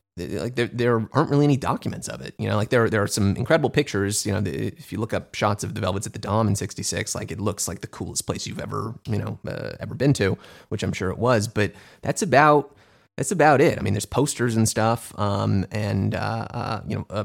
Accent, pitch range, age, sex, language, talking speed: American, 100-115 Hz, 30-49, male, English, 255 wpm